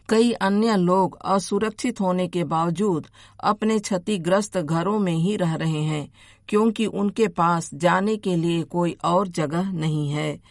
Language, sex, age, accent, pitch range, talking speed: Hindi, female, 50-69, native, 170-205 Hz, 150 wpm